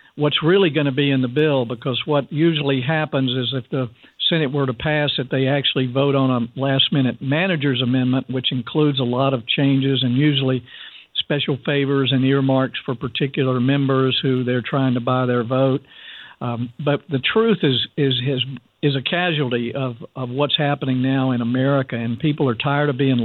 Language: English